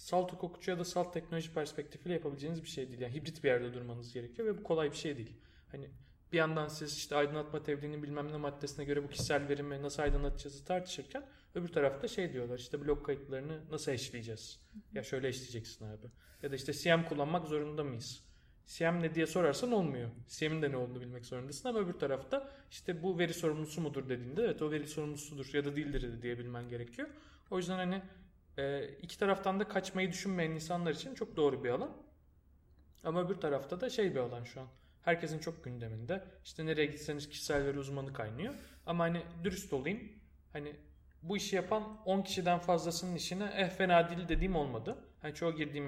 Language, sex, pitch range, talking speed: Turkish, male, 130-175 Hz, 190 wpm